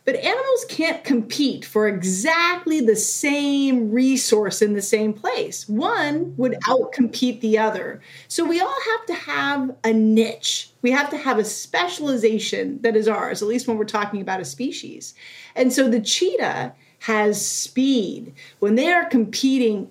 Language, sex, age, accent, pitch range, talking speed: English, female, 30-49, American, 210-285 Hz, 160 wpm